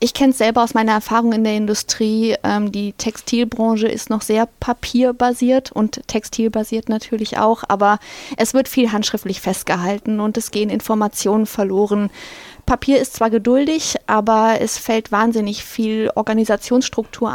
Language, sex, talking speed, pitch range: German, female, 145 wpm, 215-250 Hz